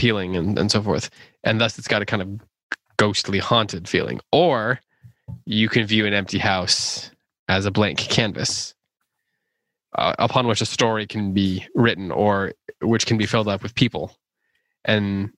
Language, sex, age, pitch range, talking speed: English, male, 20-39, 100-115 Hz, 170 wpm